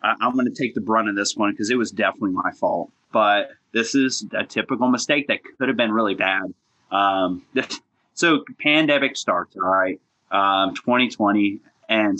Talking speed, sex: 175 wpm, male